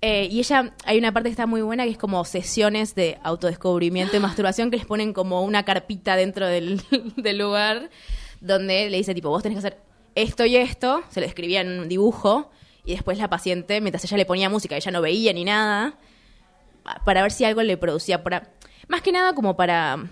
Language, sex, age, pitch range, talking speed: Spanish, female, 20-39, 175-225 Hz, 210 wpm